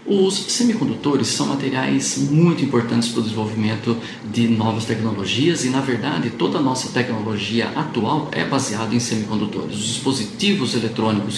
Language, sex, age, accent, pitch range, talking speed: Portuguese, male, 50-69, Brazilian, 110-150 Hz, 140 wpm